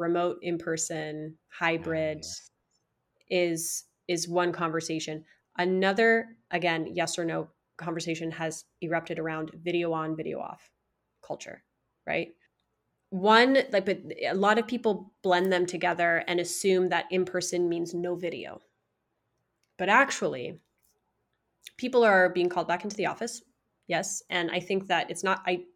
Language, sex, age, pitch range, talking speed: English, female, 20-39, 170-190 Hz, 135 wpm